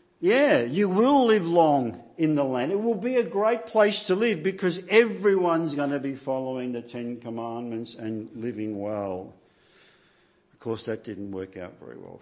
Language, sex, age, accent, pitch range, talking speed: English, male, 50-69, Australian, 130-200 Hz, 175 wpm